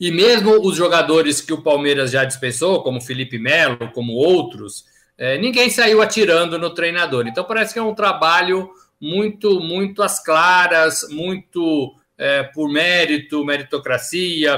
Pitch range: 135-205 Hz